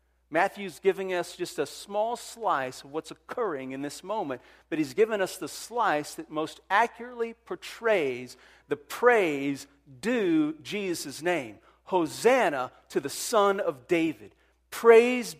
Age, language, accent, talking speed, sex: 40-59, English, American, 135 wpm, male